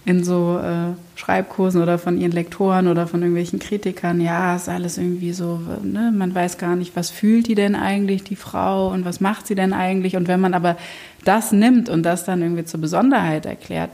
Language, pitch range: German, 165-185 Hz